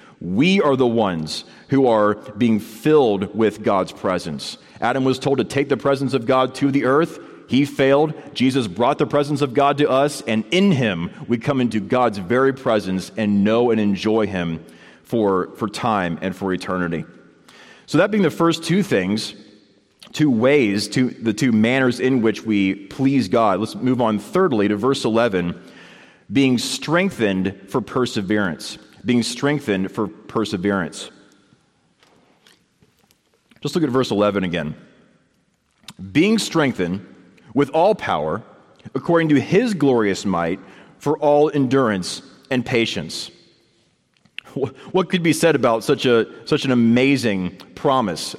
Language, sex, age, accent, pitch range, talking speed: English, male, 30-49, American, 105-140 Hz, 150 wpm